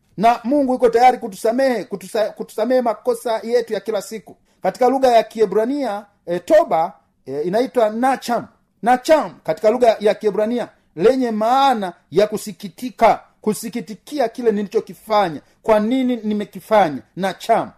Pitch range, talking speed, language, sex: 190-235 Hz, 120 wpm, Swahili, male